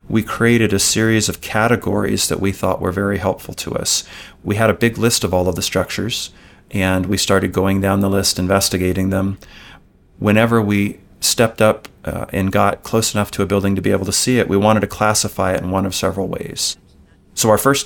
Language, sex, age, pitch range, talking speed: English, male, 30-49, 100-115 Hz, 215 wpm